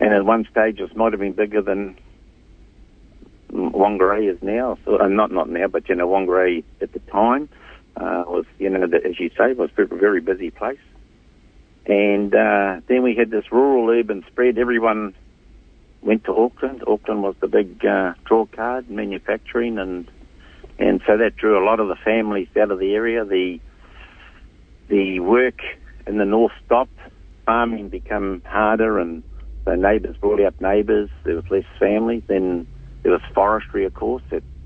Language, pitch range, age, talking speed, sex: English, 90-115 Hz, 60-79, 175 wpm, male